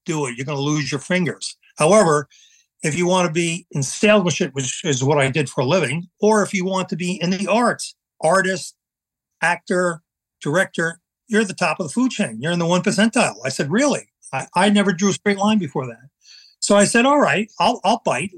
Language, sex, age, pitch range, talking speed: English, male, 50-69, 160-200 Hz, 225 wpm